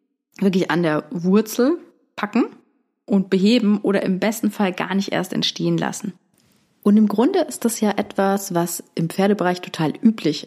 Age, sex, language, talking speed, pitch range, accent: 30-49, female, German, 160 wpm, 180-230 Hz, German